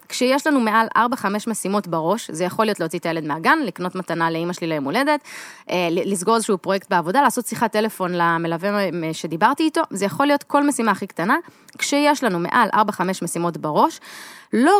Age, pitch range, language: 20-39, 190-260 Hz, Hebrew